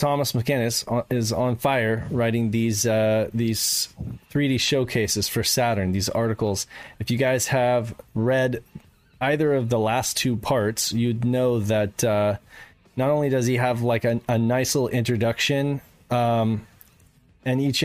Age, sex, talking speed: 20-39, male, 150 wpm